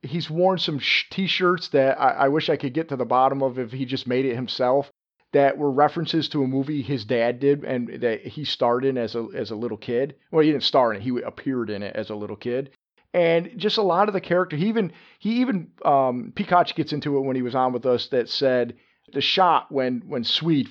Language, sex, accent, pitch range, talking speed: English, male, American, 120-155 Hz, 245 wpm